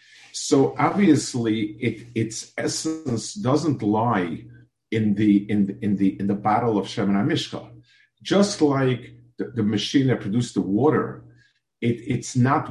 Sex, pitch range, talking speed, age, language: male, 100-125 Hz, 150 wpm, 50-69, English